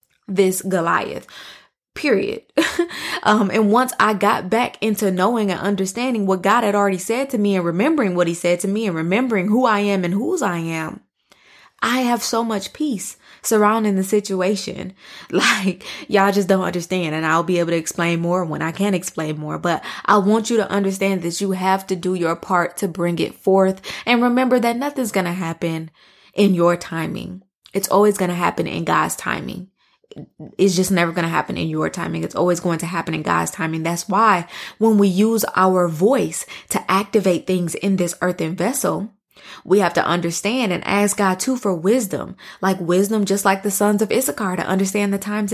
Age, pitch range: 20-39, 180-210 Hz